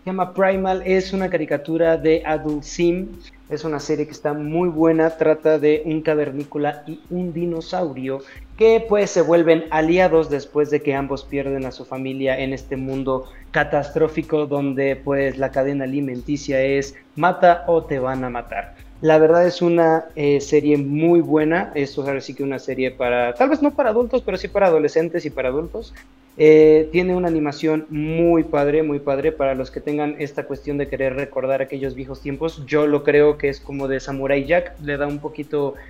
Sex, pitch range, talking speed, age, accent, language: male, 140-165 Hz, 190 wpm, 30-49, Mexican, Spanish